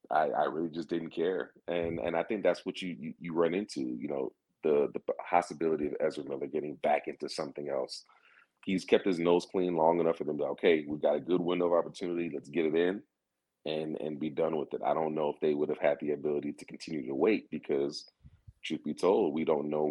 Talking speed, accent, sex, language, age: 240 wpm, American, male, English, 30-49